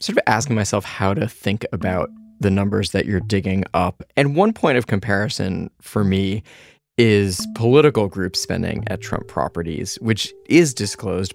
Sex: male